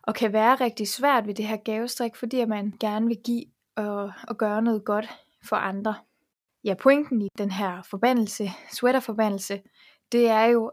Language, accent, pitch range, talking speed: Danish, native, 205-235 Hz, 175 wpm